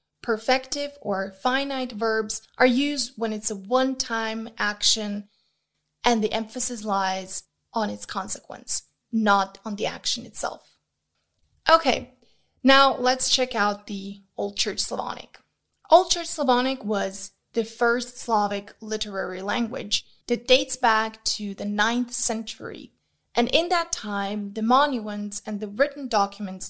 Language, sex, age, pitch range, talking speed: English, female, 20-39, 210-255 Hz, 130 wpm